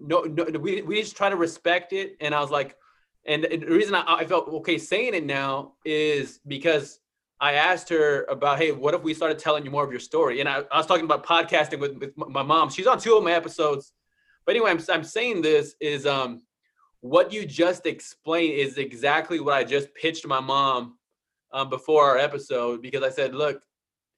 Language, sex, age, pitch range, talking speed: English, male, 20-39, 145-195 Hz, 215 wpm